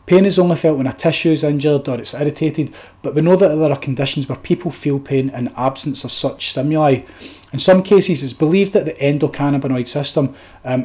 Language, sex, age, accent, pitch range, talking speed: English, male, 30-49, British, 130-155 Hz, 210 wpm